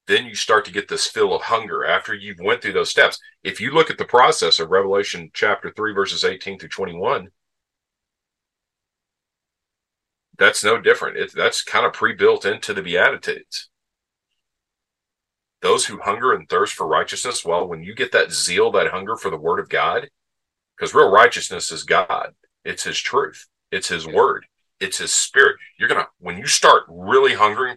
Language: English